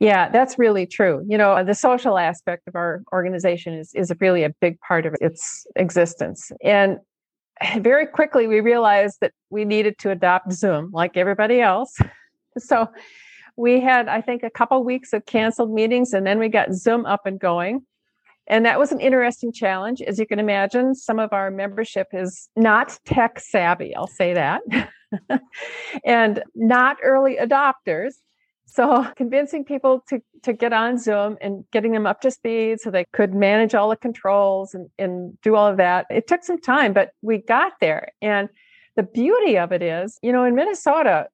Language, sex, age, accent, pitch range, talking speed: English, female, 50-69, American, 195-255 Hz, 180 wpm